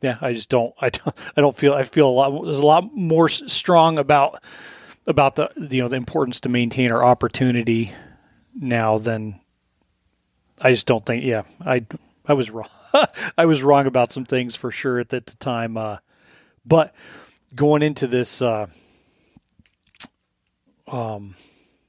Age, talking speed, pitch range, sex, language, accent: 30-49, 160 wpm, 115-140 Hz, male, English, American